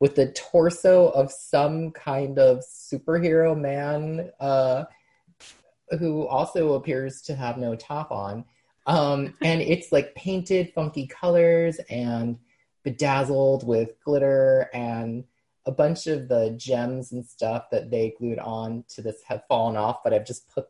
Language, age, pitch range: English, 30-49, 115-145 Hz